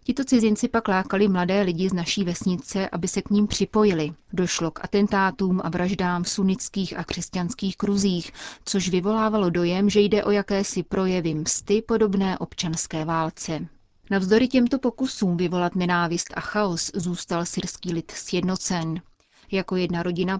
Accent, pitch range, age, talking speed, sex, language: native, 175-205 Hz, 30-49, 145 wpm, female, Czech